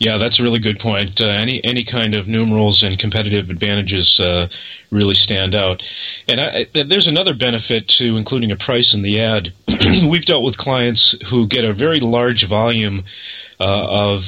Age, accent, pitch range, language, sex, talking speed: 30-49, American, 95-115 Hz, English, male, 185 wpm